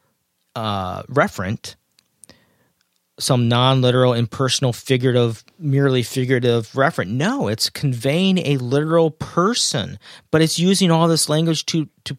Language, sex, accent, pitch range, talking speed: English, male, American, 120-160 Hz, 115 wpm